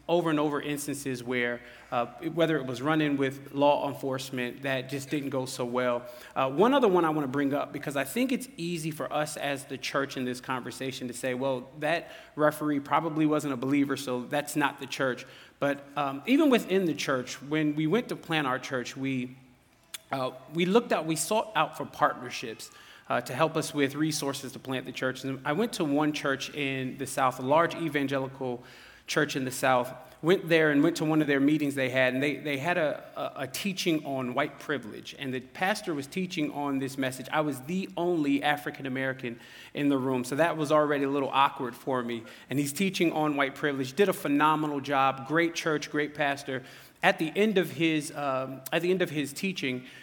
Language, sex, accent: English, male, American